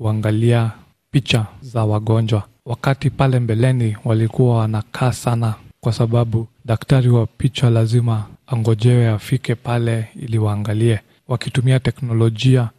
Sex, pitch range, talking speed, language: male, 110-125 Hz, 110 wpm, Swahili